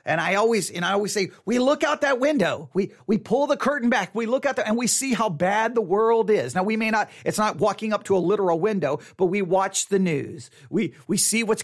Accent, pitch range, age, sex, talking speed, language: American, 200-270 Hz, 40-59, male, 265 wpm, English